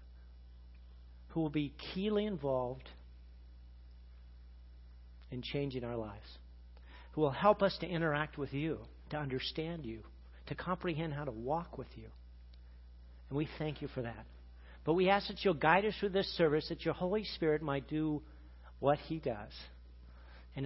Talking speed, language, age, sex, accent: 155 wpm, English, 50-69, male, American